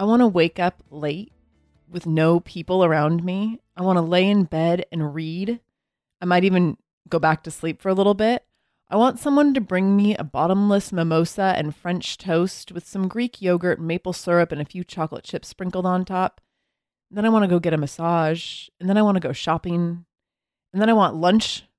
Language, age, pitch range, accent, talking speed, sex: English, 30-49, 160-200 Hz, American, 210 wpm, female